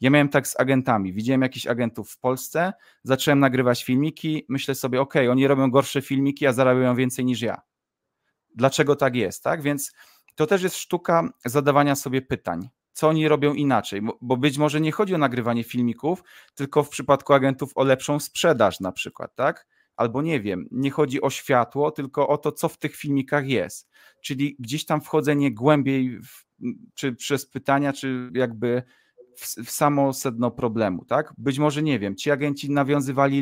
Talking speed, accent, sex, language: 175 wpm, native, male, Polish